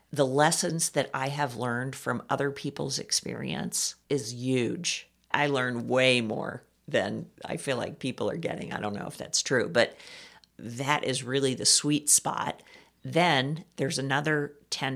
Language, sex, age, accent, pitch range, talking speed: English, female, 50-69, American, 130-170 Hz, 160 wpm